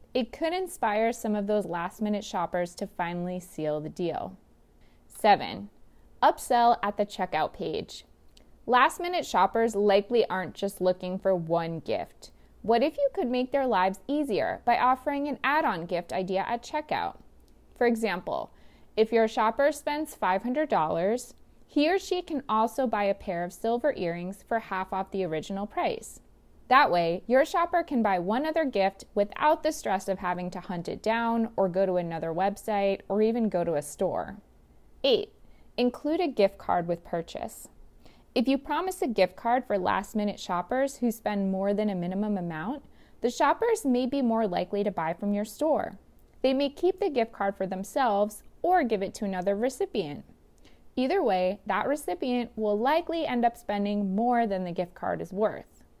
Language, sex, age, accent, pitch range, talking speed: English, female, 20-39, American, 190-260 Hz, 175 wpm